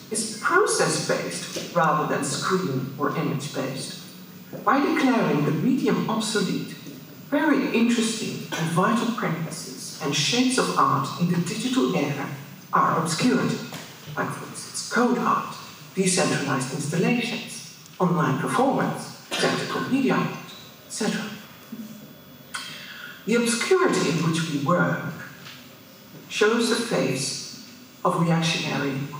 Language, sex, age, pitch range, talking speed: English, female, 60-79, 150-215 Hz, 110 wpm